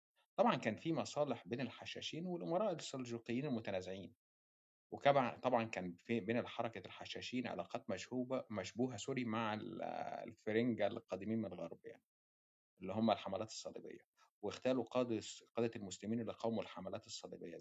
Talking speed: 125 wpm